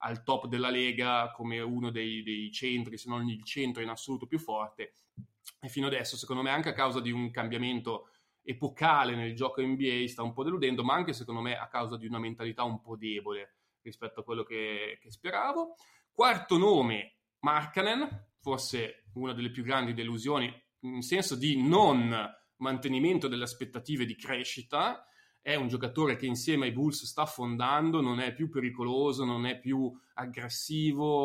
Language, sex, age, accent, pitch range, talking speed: Italian, male, 20-39, native, 120-140 Hz, 170 wpm